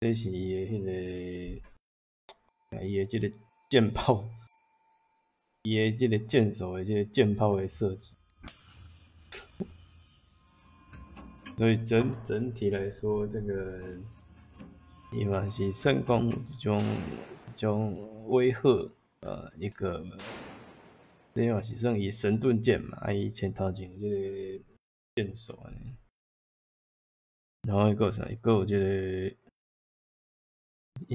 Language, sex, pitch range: Chinese, male, 95-120 Hz